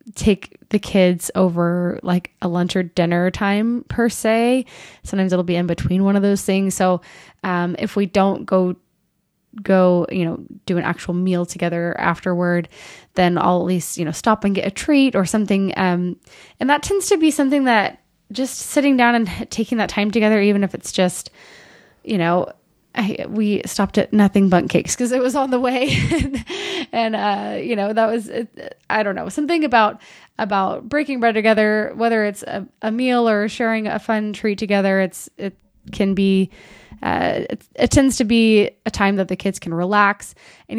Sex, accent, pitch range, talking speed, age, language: female, American, 185-230 Hz, 190 wpm, 20-39, English